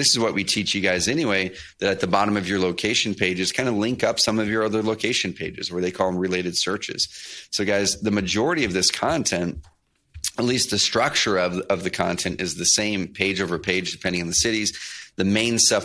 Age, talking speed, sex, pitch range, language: 30-49, 225 wpm, male, 90-105 Hz, English